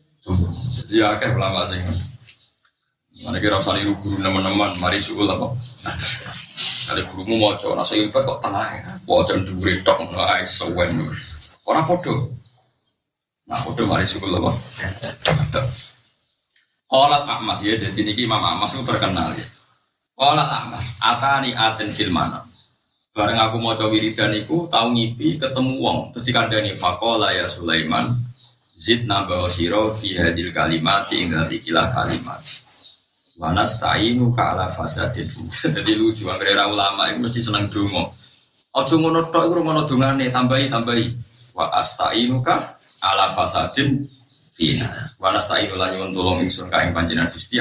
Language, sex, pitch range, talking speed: Indonesian, male, 95-125 Hz, 110 wpm